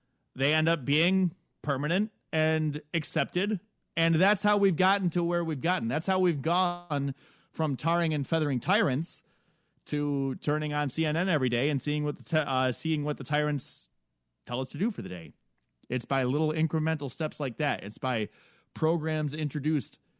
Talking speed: 175 wpm